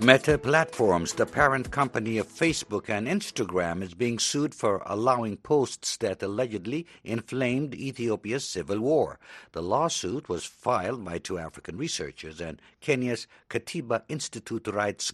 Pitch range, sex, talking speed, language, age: 100-135 Hz, male, 135 wpm, English, 60-79